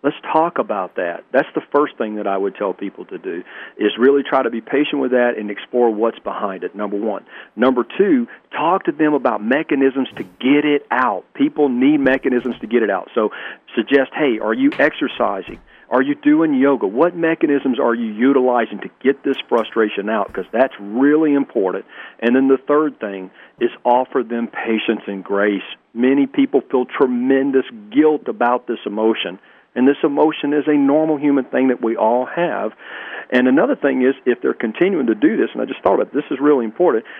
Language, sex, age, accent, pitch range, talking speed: English, male, 40-59, American, 110-150 Hz, 200 wpm